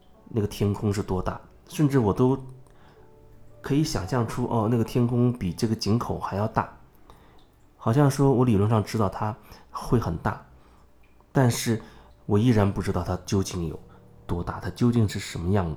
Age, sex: 30-49, male